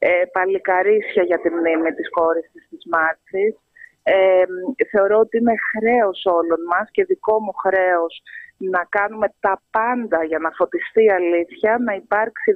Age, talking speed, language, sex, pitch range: 30-49, 140 wpm, Greek, female, 190-230 Hz